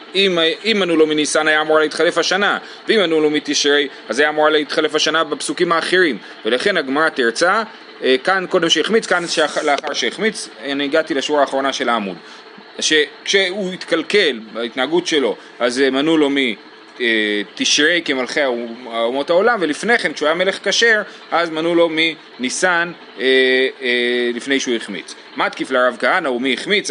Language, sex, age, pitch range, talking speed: Hebrew, male, 30-49, 135-180 Hz, 145 wpm